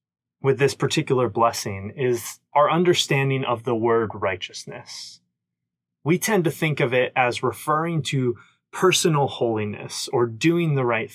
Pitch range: 110-140 Hz